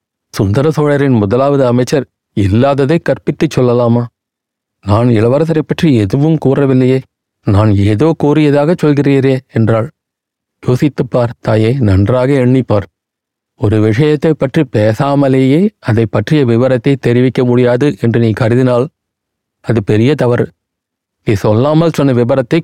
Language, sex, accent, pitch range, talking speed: Tamil, male, native, 115-145 Hz, 110 wpm